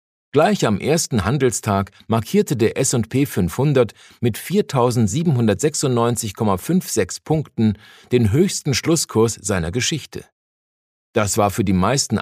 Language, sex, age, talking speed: German, male, 50-69, 105 wpm